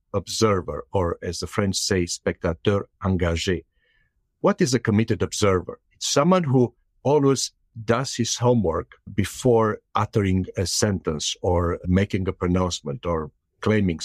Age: 60-79